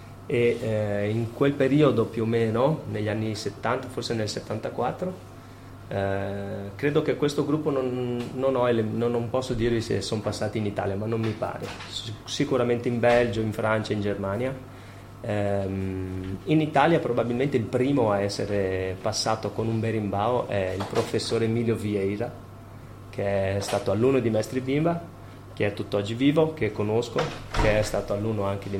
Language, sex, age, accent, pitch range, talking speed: Italian, male, 30-49, native, 100-120 Hz, 165 wpm